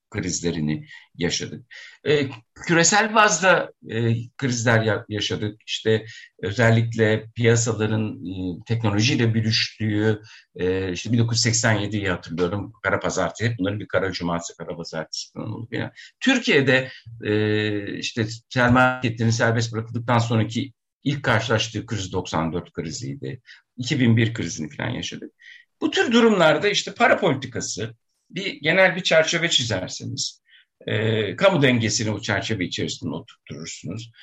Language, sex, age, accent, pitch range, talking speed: Turkish, male, 60-79, native, 110-155 Hz, 105 wpm